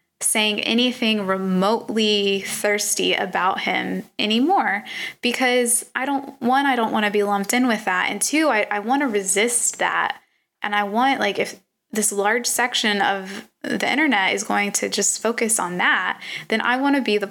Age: 20-39